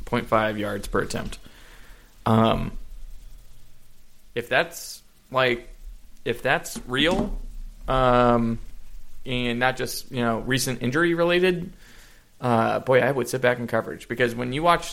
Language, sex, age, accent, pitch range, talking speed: English, male, 20-39, American, 115-125 Hz, 130 wpm